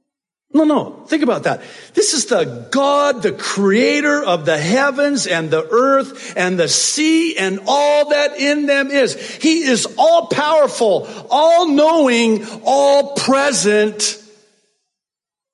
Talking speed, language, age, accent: 120 wpm, English, 50-69, American